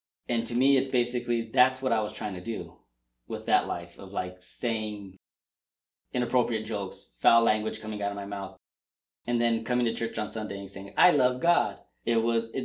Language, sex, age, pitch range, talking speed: English, male, 20-39, 105-125 Hz, 195 wpm